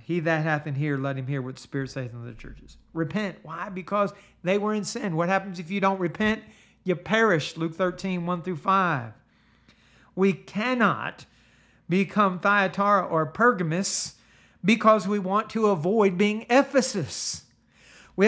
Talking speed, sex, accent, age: 160 wpm, male, American, 50-69